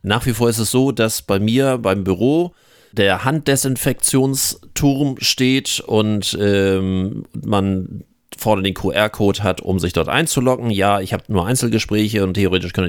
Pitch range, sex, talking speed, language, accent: 100-130 Hz, male, 155 wpm, German, German